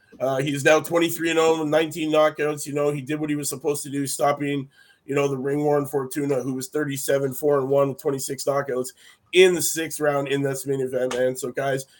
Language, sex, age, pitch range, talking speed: English, male, 30-49, 135-160 Hz, 220 wpm